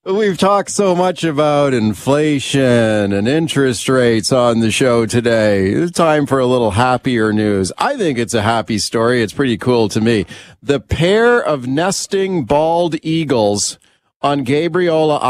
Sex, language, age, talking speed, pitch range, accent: male, English, 40-59, 155 wpm, 125-155 Hz, American